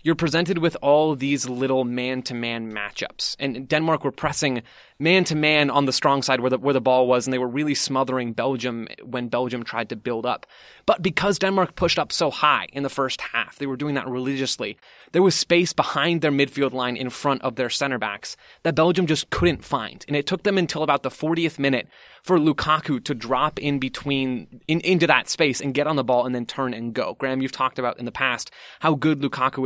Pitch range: 125-150 Hz